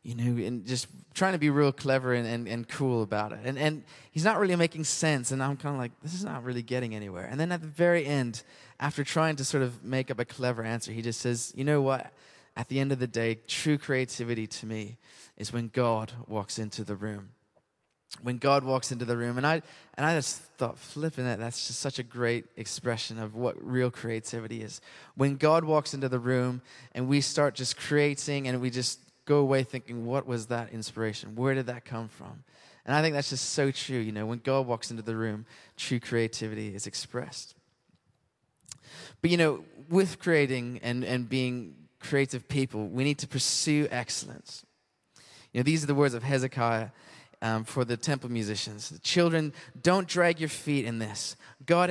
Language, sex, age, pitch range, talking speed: English, male, 20-39, 120-145 Hz, 205 wpm